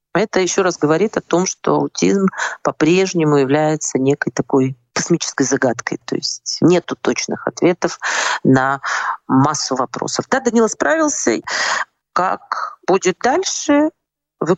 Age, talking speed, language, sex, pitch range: 40-59, 120 wpm, Russian, female, 135-185 Hz